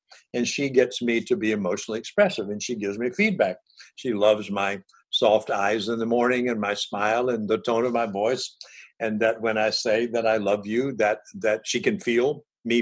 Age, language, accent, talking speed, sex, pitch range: 60-79, English, American, 210 wpm, male, 110-160 Hz